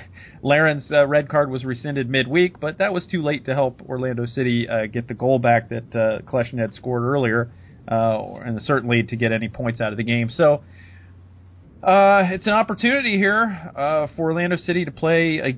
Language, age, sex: English, 30-49, male